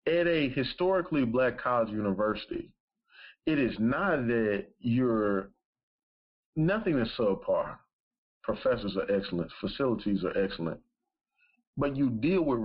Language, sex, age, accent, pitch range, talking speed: English, male, 40-59, American, 100-145 Hz, 120 wpm